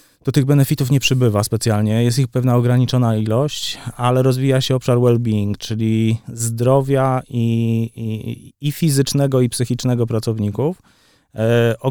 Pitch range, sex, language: 110-130 Hz, male, English